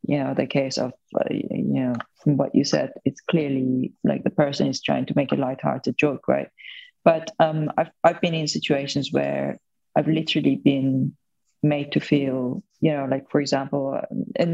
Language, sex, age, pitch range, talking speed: English, female, 30-49, 140-160 Hz, 185 wpm